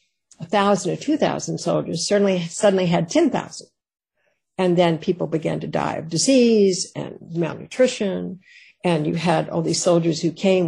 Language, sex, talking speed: English, female, 145 wpm